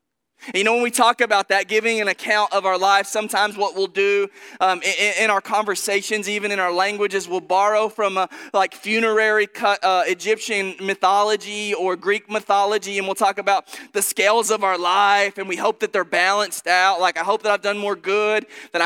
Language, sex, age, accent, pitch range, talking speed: English, male, 20-39, American, 195-225 Hz, 205 wpm